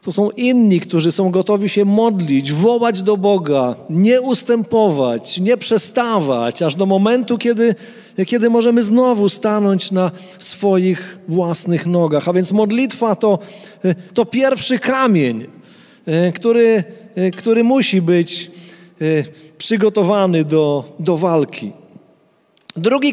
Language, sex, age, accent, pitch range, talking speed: Polish, male, 40-59, native, 180-235 Hz, 110 wpm